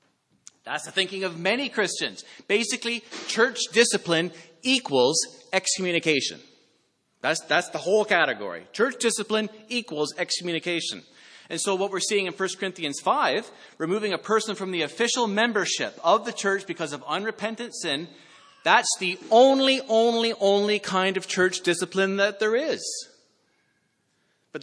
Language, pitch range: English, 165-220 Hz